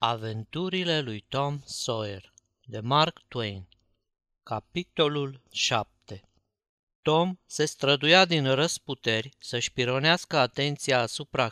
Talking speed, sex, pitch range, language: 95 wpm, male, 120-155 Hz, Romanian